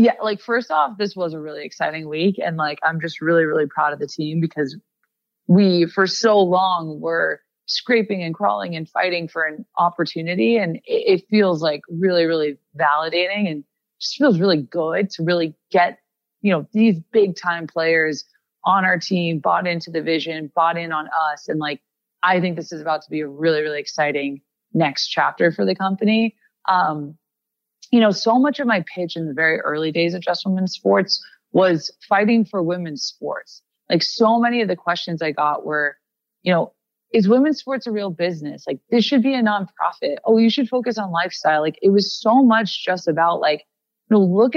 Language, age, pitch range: English, 20-39, 165-225 Hz